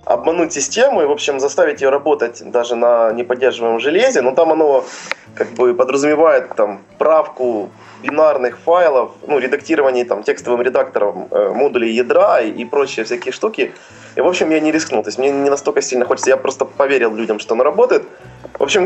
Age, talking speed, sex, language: 20-39, 180 wpm, male, Russian